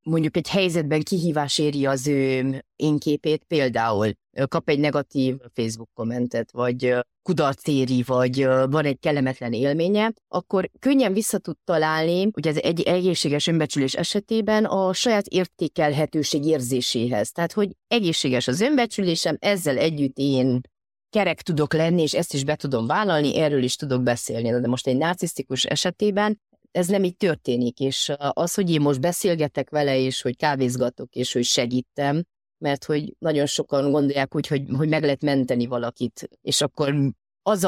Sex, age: female, 30-49